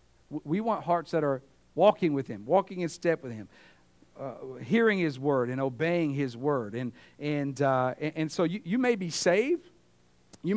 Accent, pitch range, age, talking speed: American, 125-180 Hz, 50-69, 185 wpm